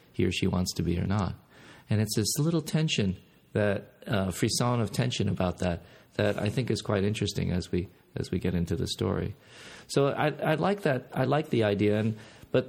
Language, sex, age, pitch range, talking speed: English, male, 40-59, 100-120 Hz, 215 wpm